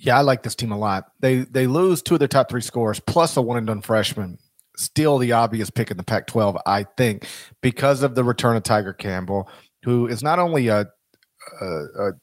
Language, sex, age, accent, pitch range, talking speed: English, male, 40-59, American, 110-130 Hz, 205 wpm